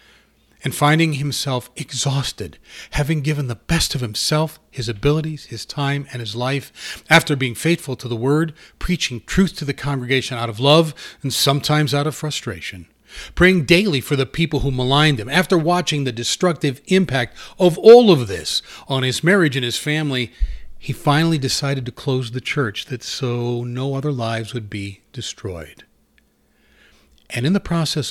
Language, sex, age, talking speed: English, male, 40-59, 165 wpm